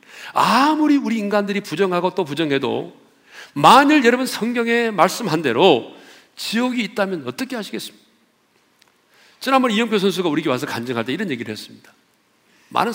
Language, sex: Korean, male